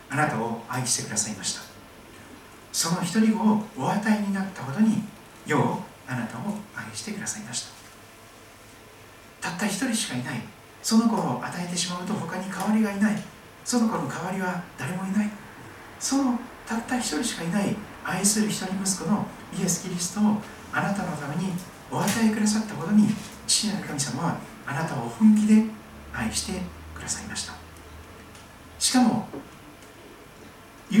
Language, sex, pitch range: Japanese, male, 150-215 Hz